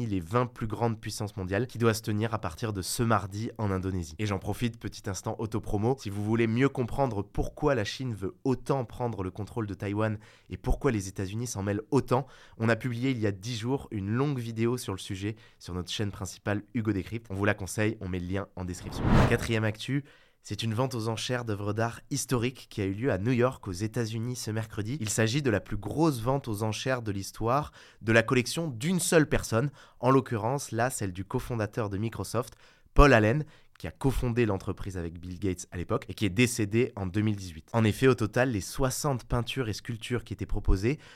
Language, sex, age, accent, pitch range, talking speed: French, male, 20-39, French, 105-125 Hz, 225 wpm